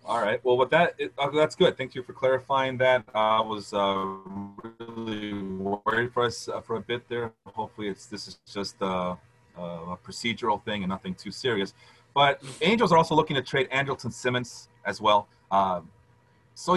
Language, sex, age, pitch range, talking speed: English, male, 30-49, 105-135 Hz, 190 wpm